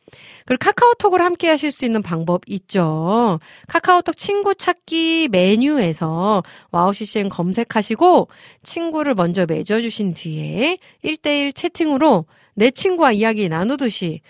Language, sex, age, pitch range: Korean, female, 40-59, 175-275 Hz